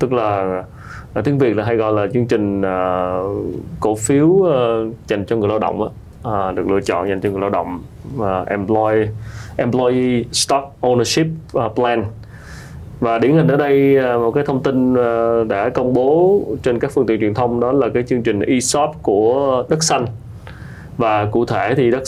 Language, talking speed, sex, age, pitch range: Vietnamese, 190 wpm, male, 20-39, 110-140 Hz